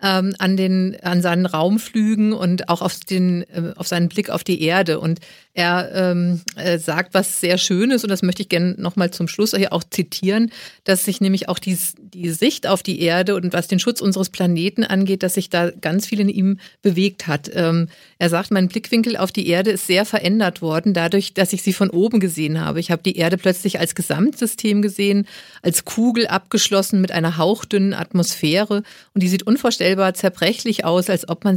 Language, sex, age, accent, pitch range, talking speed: German, female, 50-69, German, 175-210 Hz, 195 wpm